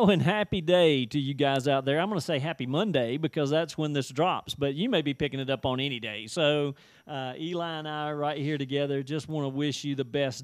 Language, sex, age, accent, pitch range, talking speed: English, male, 40-59, American, 140-170 Hz, 260 wpm